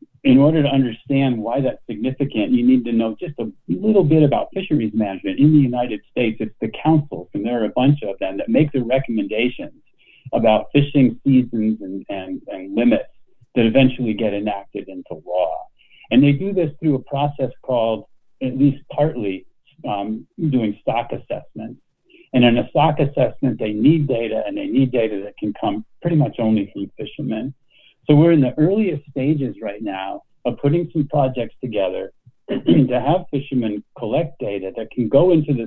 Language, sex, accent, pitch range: English, male, American, 115-150 Hz